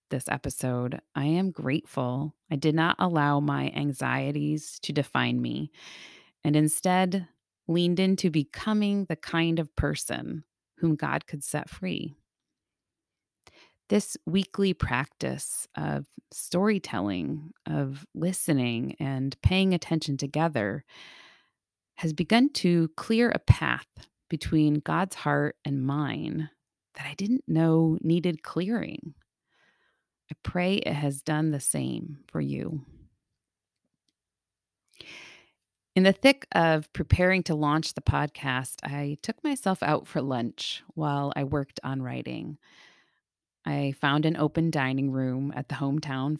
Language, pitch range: English, 135-165 Hz